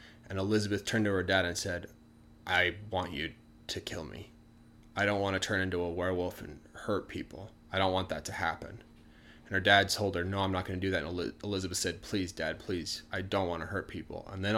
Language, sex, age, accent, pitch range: Chinese, male, 20-39, American, 90-110 Hz